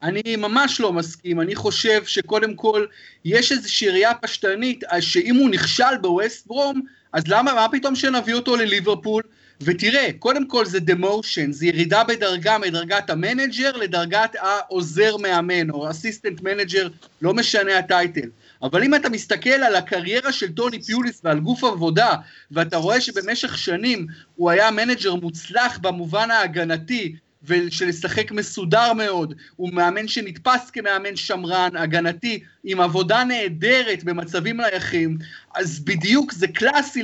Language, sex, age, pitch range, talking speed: Hebrew, male, 30-49, 180-250 Hz, 135 wpm